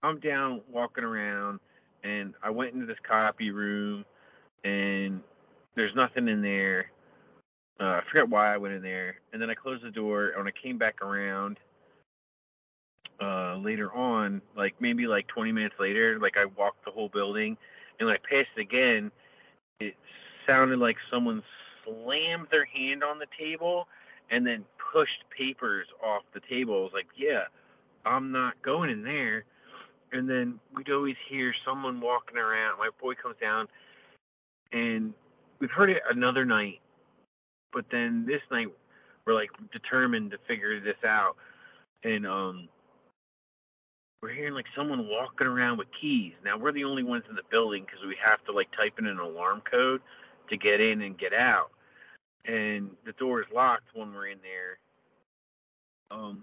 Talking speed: 165 wpm